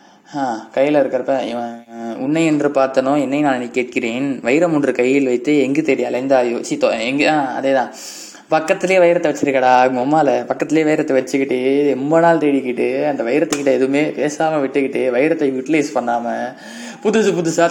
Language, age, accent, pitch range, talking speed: Tamil, 20-39, native, 120-145 Hz, 145 wpm